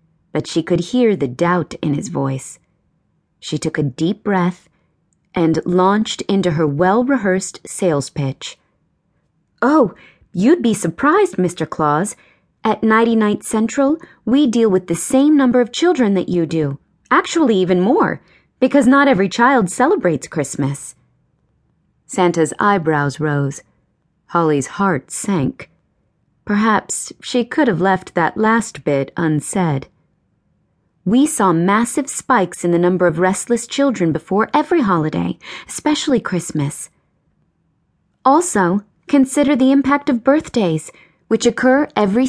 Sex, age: female, 30-49